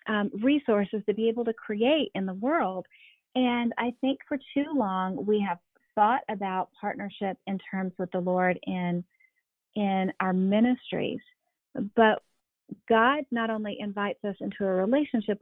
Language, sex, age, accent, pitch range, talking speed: English, female, 40-59, American, 185-230 Hz, 150 wpm